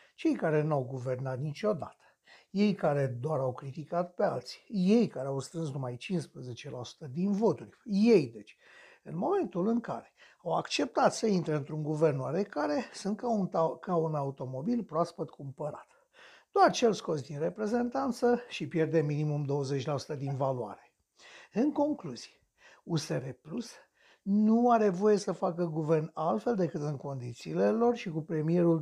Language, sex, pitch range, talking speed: Romanian, male, 150-225 Hz, 150 wpm